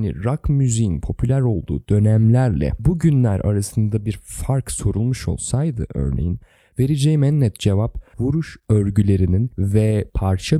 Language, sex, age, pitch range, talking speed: Turkish, male, 30-49, 100-140 Hz, 125 wpm